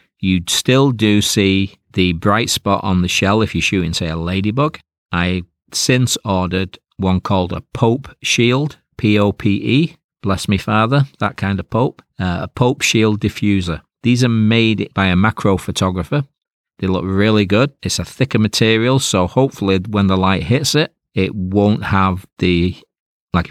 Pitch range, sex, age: 95-110 Hz, male, 40-59